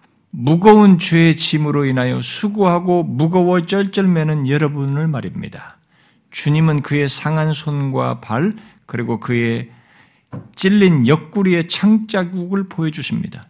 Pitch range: 155-200 Hz